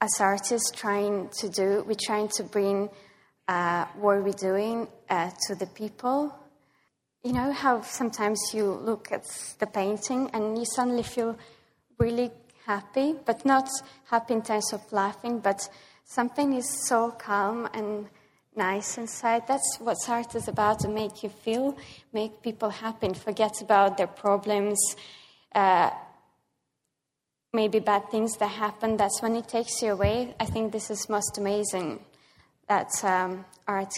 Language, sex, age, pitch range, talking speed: English, female, 20-39, 205-240 Hz, 150 wpm